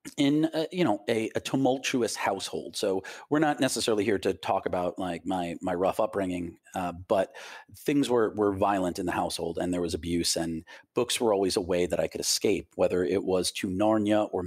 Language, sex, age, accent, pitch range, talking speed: English, male, 40-59, American, 90-105 Hz, 205 wpm